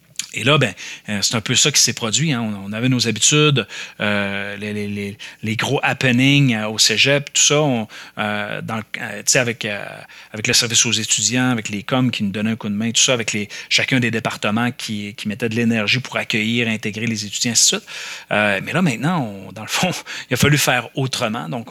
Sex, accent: male, Canadian